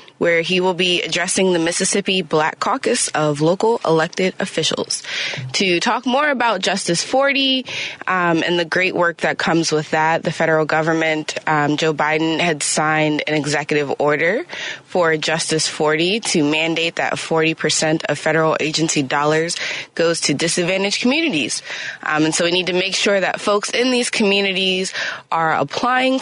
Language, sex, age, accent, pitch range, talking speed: English, female, 20-39, American, 155-200 Hz, 160 wpm